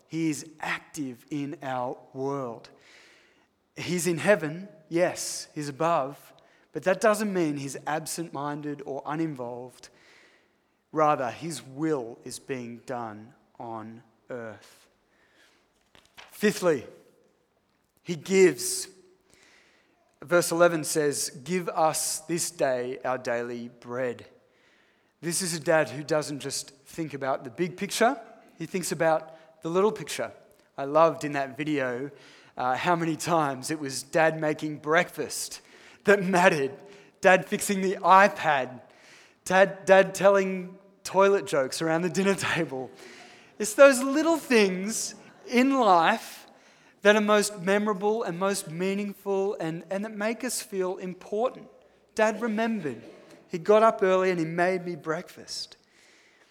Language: English